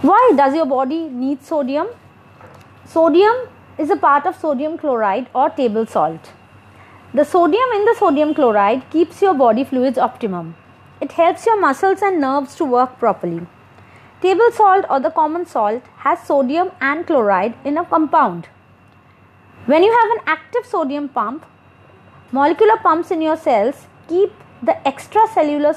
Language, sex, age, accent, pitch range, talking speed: English, female, 30-49, Indian, 245-345 Hz, 150 wpm